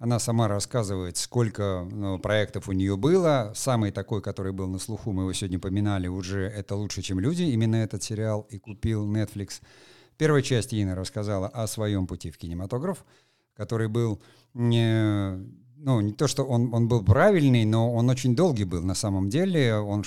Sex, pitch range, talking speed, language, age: male, 100-120 Hz, 175 wpm, Russian, 50-69